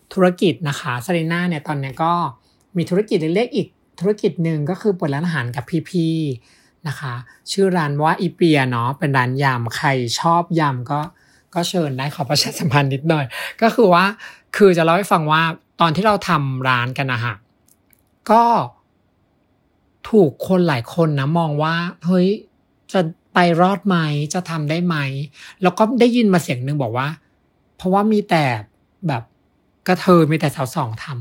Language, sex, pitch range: Thai, male, 135-185 Hz